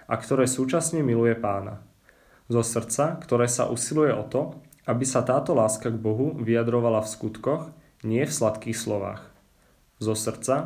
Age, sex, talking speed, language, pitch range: 20-39, male, 150 wpm, Czech, 110-130 Hz